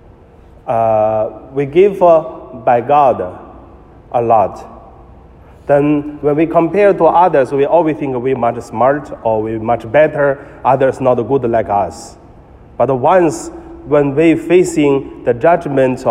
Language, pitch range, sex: Chinese, 110-150 Hz, male